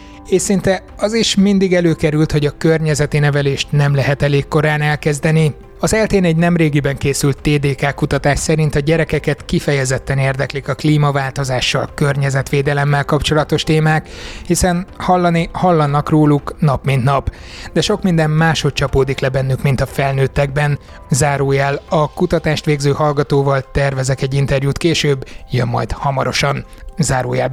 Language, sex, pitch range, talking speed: Hungarian, male, 140-160 Hz, 135 wpm